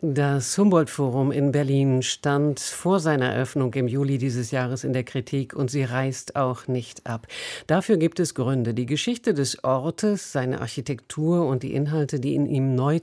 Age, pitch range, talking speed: 50-69, 130-165 Hz, 175 wpm